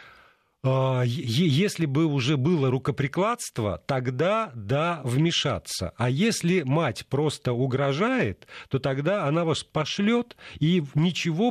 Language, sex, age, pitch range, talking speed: Russian, male, 40-59, 120-170 Hz, 105 wpm